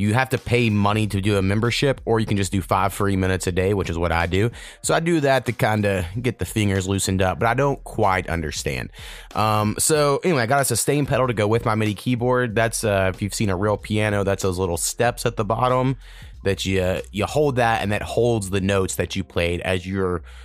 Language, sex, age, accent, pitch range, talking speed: English, male, 30-49, American, 95-115 Hz, 250 wpm